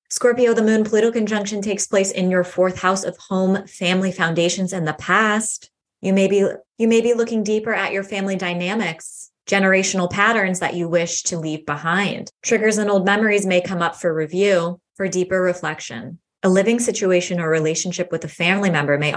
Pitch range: 165-200 Hz